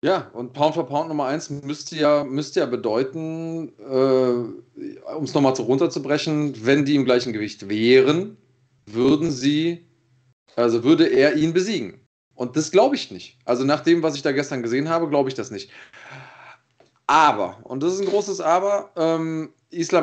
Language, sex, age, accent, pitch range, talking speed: German, male, 30-49, German, 130-165 Hz, 170 wpm